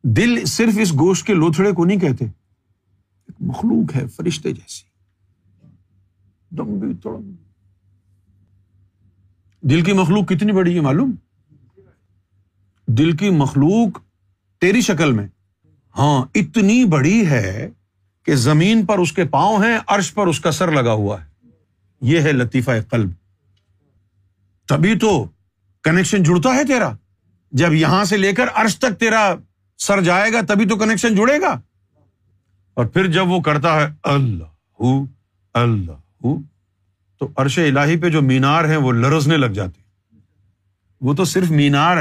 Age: 50-69